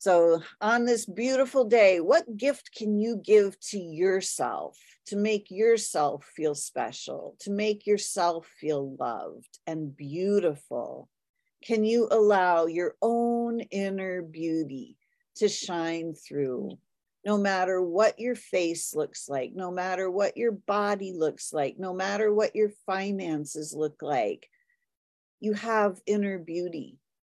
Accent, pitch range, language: American, 160-215 Hz, English